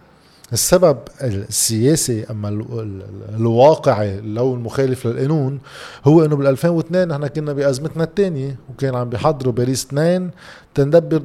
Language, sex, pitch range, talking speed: Arabic, male, 115-150 Hz, 105 wpm